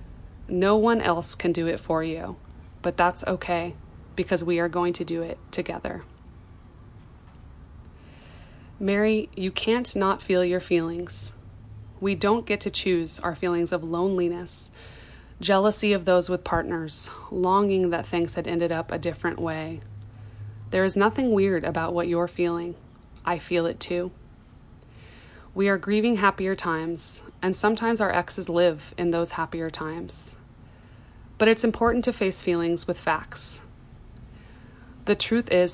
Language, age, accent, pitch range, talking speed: English, 20-39, American, 130-190 Hz, 145 wpm